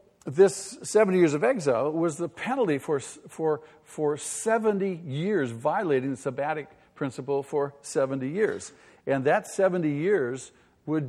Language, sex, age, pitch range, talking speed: English, male, 50-69, 125-155 Hz, 135 wpm